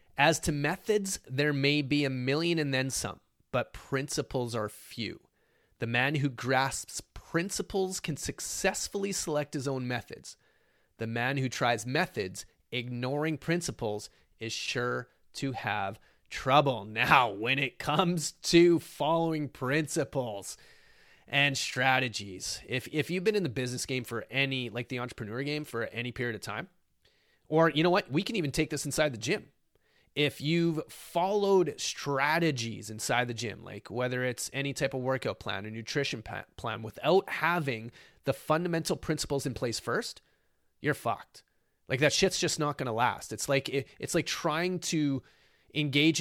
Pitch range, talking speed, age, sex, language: 125-155 Hz, 155 wpm, 30-49, male, English